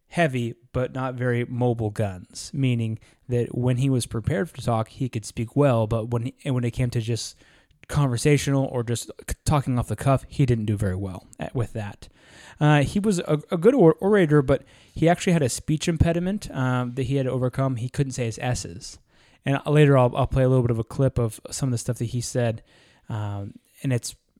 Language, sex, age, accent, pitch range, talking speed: English, male, 20-39, American, 115-140 Hz, 215 wpm